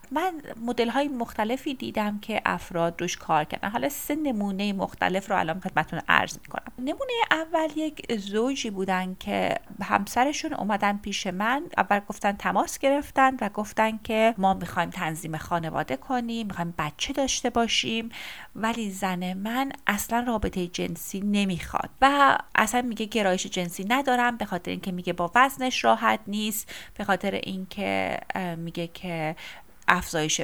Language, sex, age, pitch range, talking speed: Persian, female, 30-49, 185-255 Hz, 145 wpm